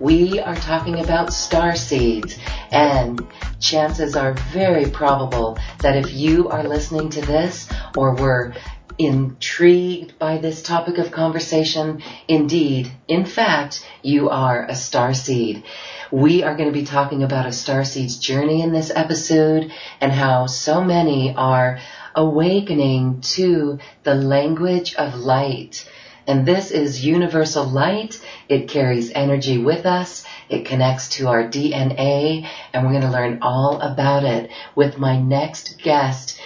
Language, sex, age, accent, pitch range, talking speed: English, female, 40-59, American, 130-160 Hz, 140 wpm